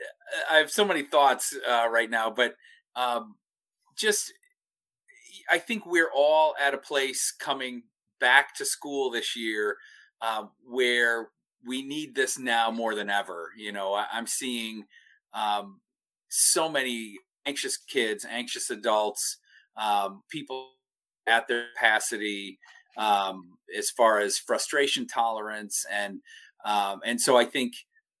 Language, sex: English, male